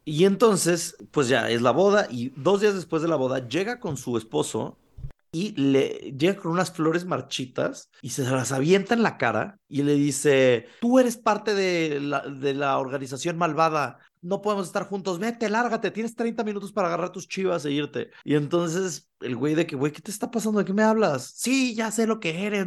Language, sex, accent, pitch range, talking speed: Spanish, male, Mexican, 125-180 Hz, 210 wpm